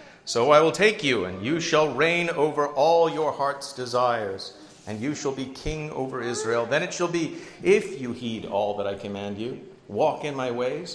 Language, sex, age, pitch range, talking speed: English, male, 50-69, 110-140 Hz, 205 wpm